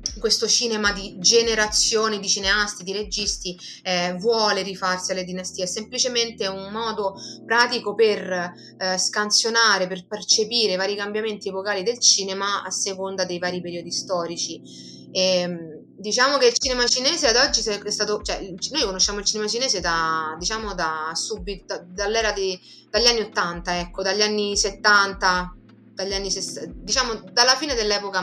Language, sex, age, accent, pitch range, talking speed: Italian, female, 20-39, native, 180-215 Hz, 145 wpm